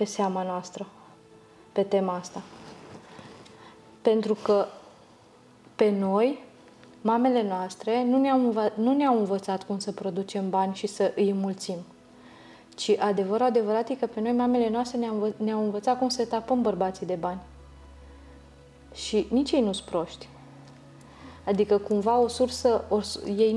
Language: Romanian